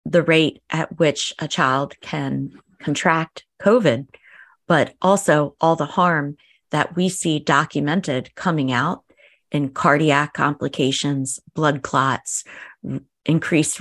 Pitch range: 145-180 Hz